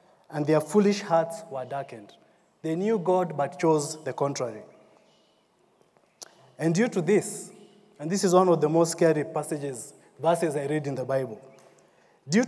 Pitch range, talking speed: 150-190 Hz, 160 wpm